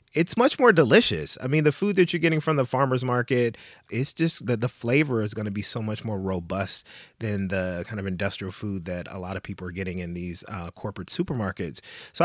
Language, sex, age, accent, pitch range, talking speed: English, male, 30-49, American, 105-135 Hz, 230 wpm